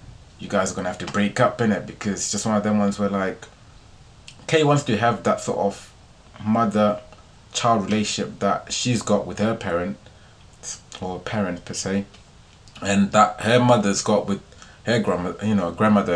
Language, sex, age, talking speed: English, male, 20-39, 185 wpm